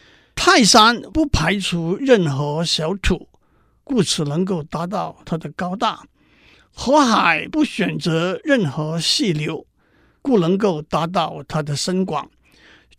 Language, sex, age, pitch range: Chinese, male, 50-69, 160-210 Hz